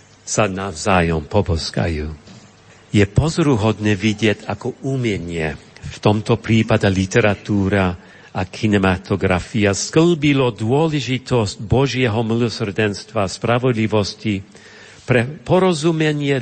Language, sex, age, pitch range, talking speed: Slovak, male, 50-69, 105-135 Hz, 80 wpm